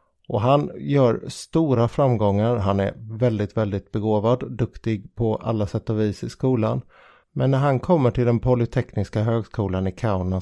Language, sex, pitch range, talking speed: Swedish, male, 105-125 Hz, 160 wpm